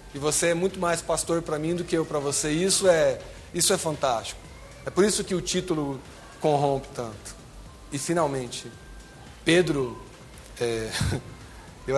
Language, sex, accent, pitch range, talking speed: Portuguese, male, Brazilian, 145-200 Hz, 155 wpm